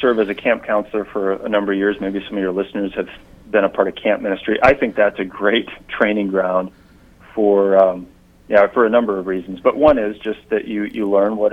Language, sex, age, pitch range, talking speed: English, male, 40-59, 95-110 Hz, 240 wpm